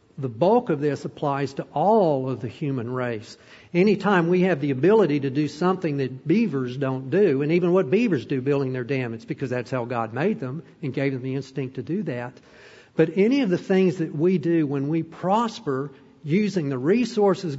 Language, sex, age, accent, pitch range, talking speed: English, male, 50-69, American, 135-175 Hz, 205 wpm